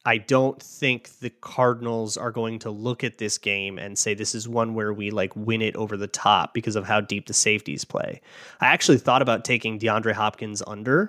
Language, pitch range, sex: English, 110-145 Hz, male